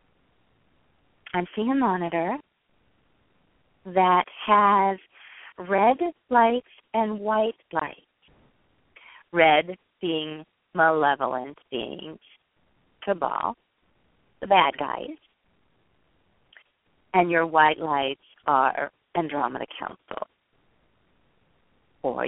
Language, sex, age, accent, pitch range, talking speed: English, female, 50-69, American, 155-190 Hz, 70 wpm